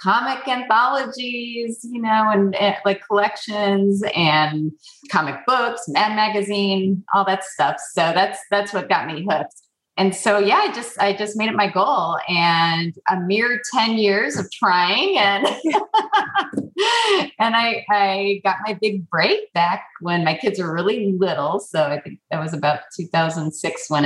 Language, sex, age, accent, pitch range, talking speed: English, female, 30-49, American, 160-210 Hz, 160 wpm